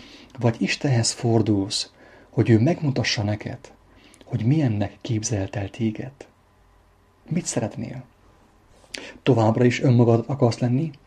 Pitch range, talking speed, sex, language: 105-125 Hz, 105 wpm, male, English